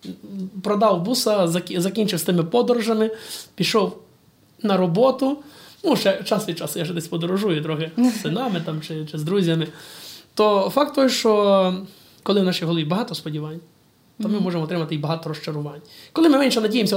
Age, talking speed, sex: 20-39, 165 wpm, male